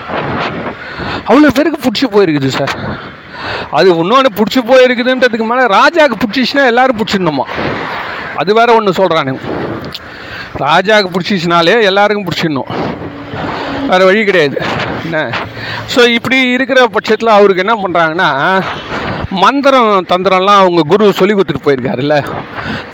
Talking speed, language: 110 wpm, Tamil